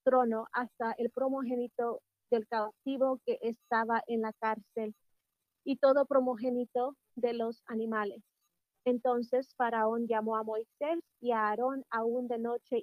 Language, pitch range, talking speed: English, 230-260 Hz, 130 wpm